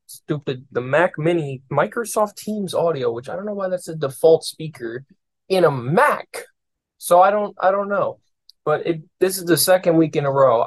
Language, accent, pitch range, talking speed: English, American, 120-165 Hz, 185 wpm